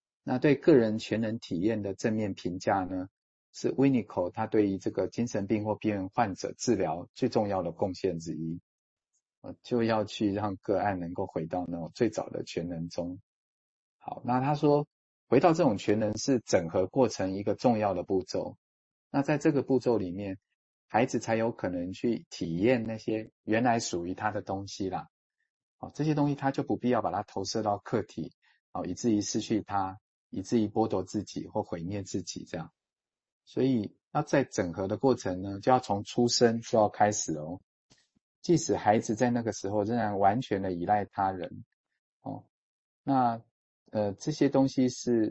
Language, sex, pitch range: Chinese, male, 95-120 Hz